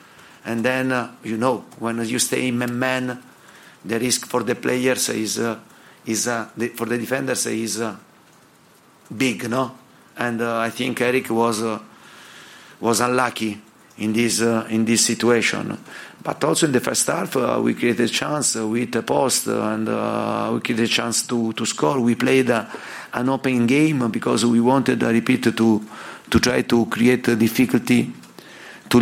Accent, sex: Italian, male